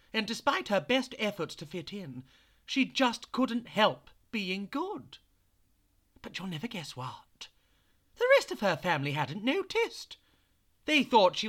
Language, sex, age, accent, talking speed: English, male, 40-59, British, 150 wpm